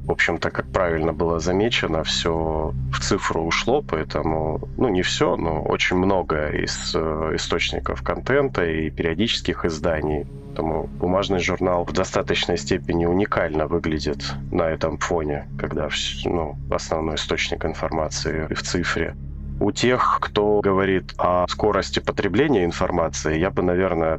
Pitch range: 75-90 Hz